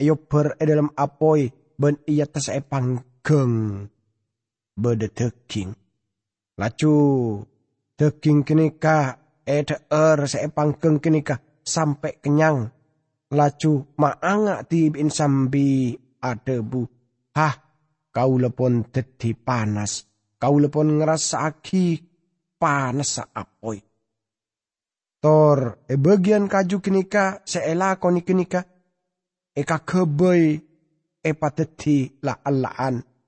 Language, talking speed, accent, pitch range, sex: English, 95 wpm, Indonesian, 125-160 Hz, male